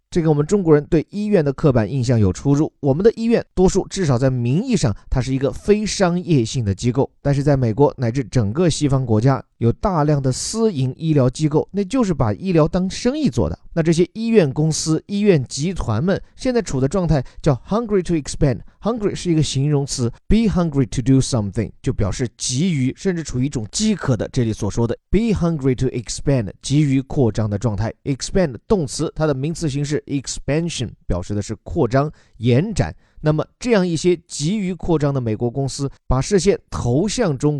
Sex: male